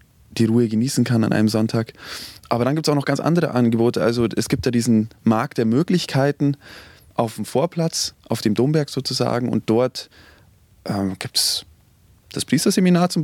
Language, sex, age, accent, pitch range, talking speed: German, male, 20-39, German, 105-135 Hz, 170 wpm